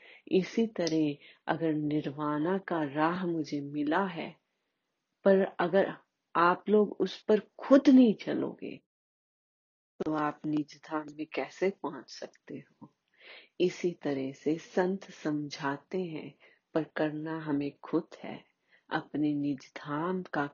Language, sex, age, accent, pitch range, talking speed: Hindi, female, 30-49, native, 150-185 Hz, 125 wpm